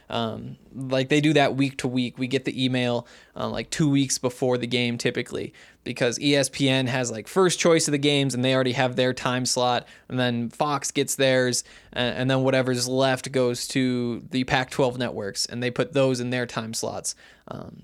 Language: English